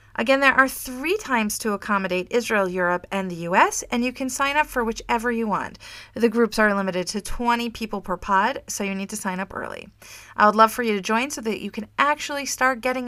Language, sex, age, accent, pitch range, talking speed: English, female, 30-49, American, 200-275 Hz, 235 wpm